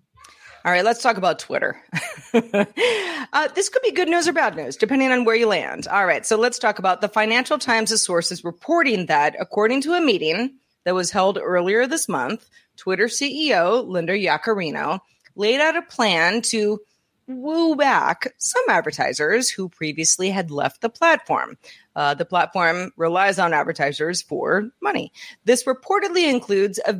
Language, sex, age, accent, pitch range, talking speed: English, female, 30-49, American, 175-245 Hz, 160 wpm